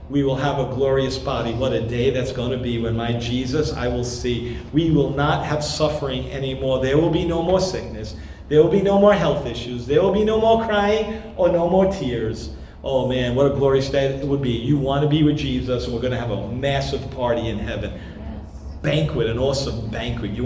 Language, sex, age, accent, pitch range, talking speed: English, male, 40-59, American, 115-150 Hz, 225 wpm